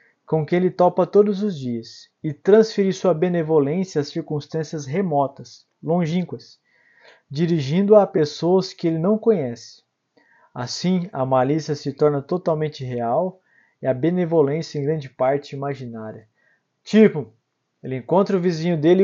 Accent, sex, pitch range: Brazilian, male, 145-190 Hz